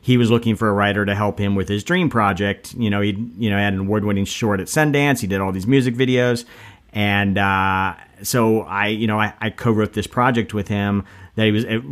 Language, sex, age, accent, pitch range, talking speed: English, male, 40-59, American, 95-115 Hz, 235 wpm